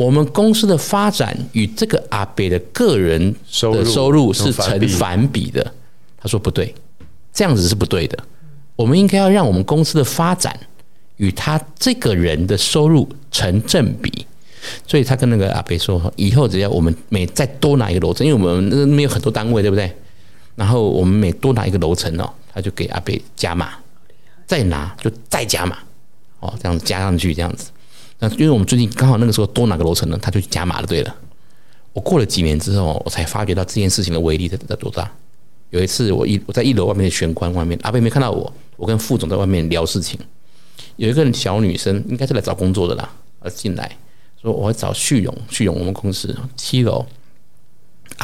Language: Chinese